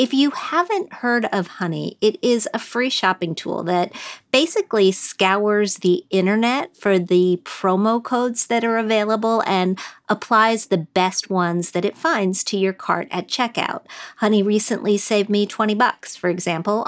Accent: American